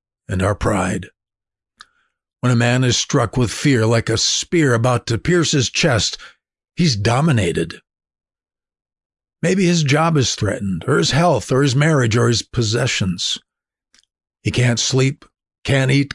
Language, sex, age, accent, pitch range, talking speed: English, male, 50-69, American, 100-140 Hz, 145 wpm